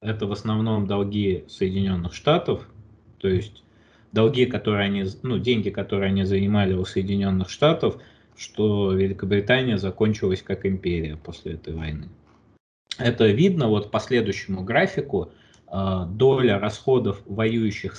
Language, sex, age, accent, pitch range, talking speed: Russian, male, 20-39, native, 95-115 Hz, 120 wpm